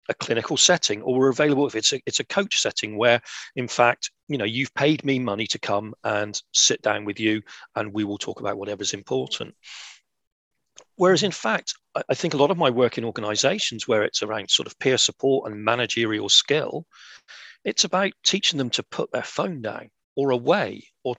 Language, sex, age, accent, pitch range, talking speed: English, male, 40-59, British, 110-145 Hz, 195 wpm